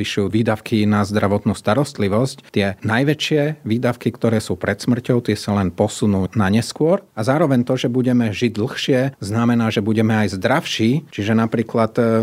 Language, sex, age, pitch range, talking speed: Slovak, male, 40-59, 100-125 Hz, 150 wpm